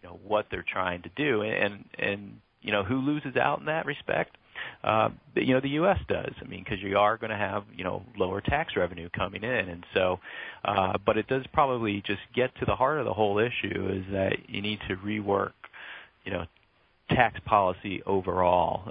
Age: 40-59